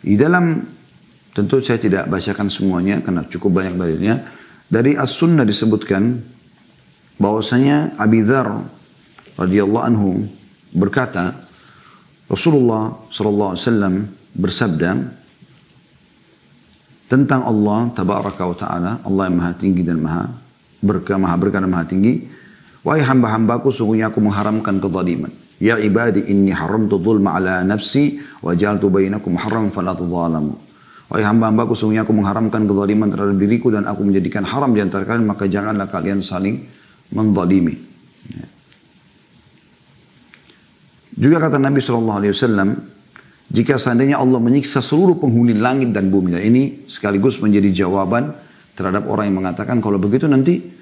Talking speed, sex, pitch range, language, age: 120 wpm, male, 95-120 Hz, Indonesian, 40-59